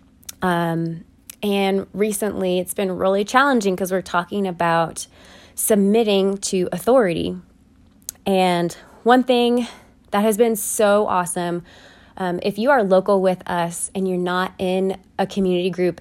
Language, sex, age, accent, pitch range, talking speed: English, female, 20-39, American, 170-200 Hz, 135 wpm